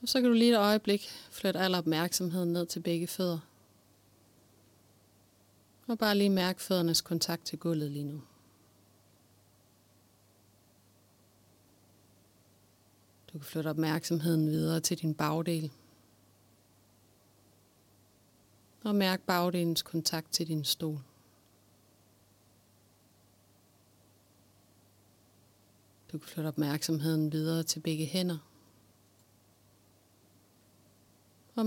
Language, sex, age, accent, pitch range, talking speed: Danish, female, 30-49, native, 100-160 Hz, 90 wpm